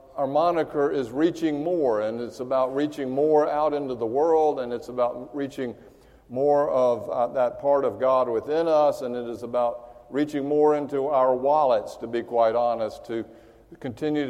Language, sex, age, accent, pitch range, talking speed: English, male, 50-69, American, 120-150 Hz, 175 wpm